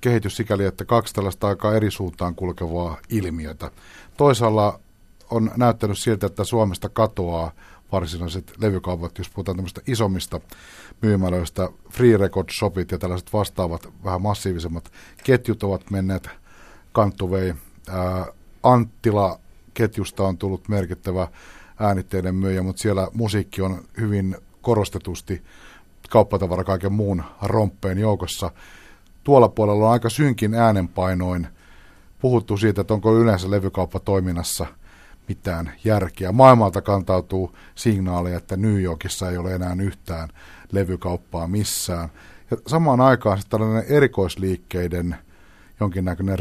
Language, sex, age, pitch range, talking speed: Finnish, male, 60-79, 90-105 Hz, 110 wpm